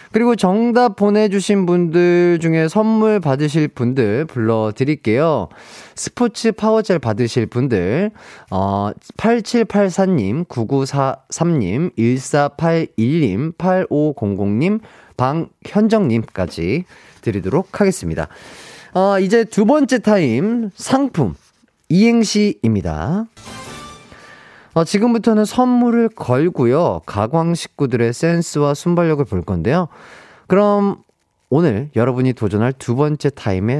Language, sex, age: Korean, male, 30-49